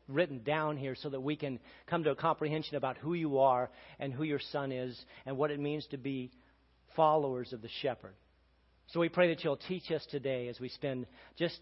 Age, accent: 40-59, American